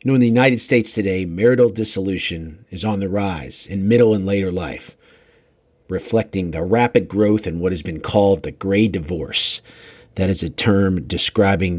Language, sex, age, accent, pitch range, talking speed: English, male, 50-69, American, 95-125 Hz, 180 wpm